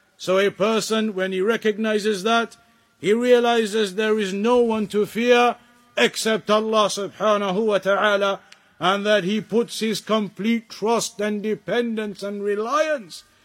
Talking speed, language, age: 140 wpm, English, 50-69